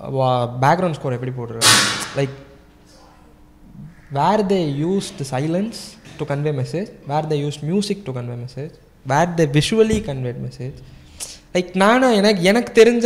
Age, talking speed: 20-39, 140 wpm